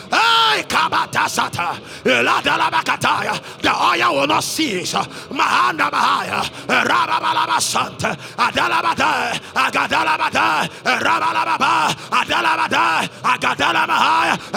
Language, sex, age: English, male, 30-49